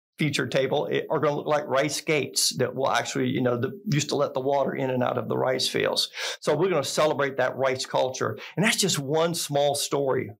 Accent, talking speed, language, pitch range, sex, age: American, 230 wpm, English, 130-170 Hz, male, 50-69